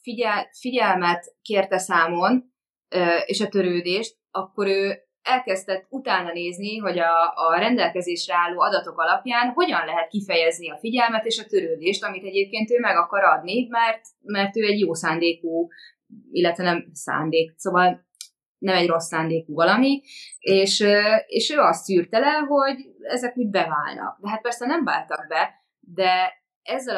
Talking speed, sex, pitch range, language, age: 145 wpm, female, 175-225 Hz, Hungarian, 20-39